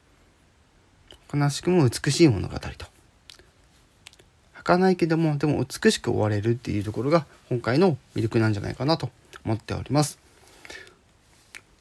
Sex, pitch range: male, 105-140 Hz